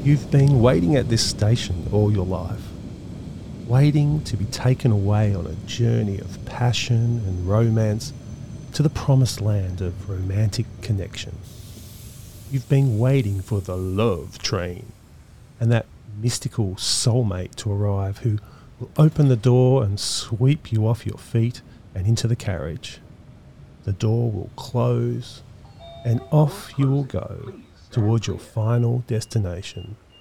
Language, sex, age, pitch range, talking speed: English, male, 30-49, 100-125 Hz, 135 wpm